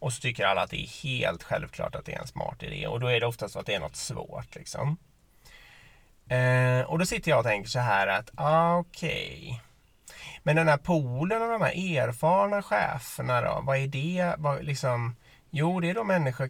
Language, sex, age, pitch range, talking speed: Swedish, male, 30-49, 120-165 Hz, 220 wpm